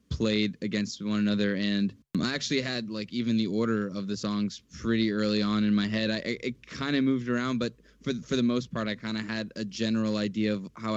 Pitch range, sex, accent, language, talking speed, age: 100-115 Hz, male, American, English, 230 wpm, 10-29